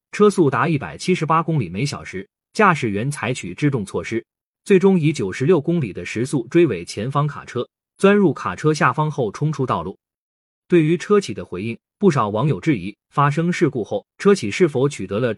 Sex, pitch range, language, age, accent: male, 135-175 Hz, Chinese, 20-39, native